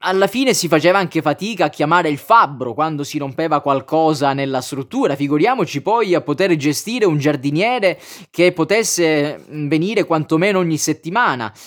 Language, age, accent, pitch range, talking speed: Italian, 20-39, native, 145-185 Hz, 150 wpm